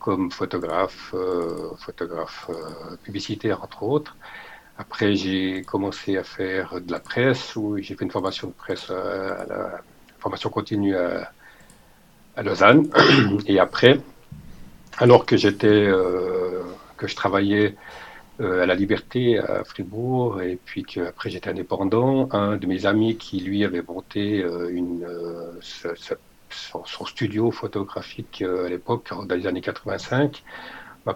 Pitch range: 95-105 Hz